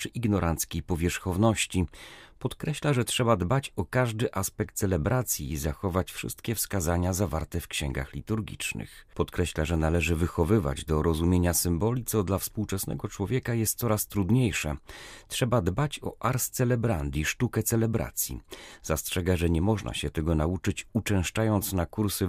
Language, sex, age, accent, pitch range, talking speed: Polish, male, 40-59, native, 85-115 Hz, 135 wpm